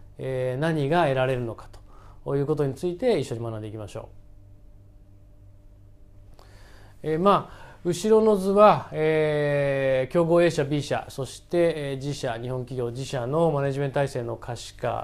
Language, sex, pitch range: Japanese, male, 110-160 Hz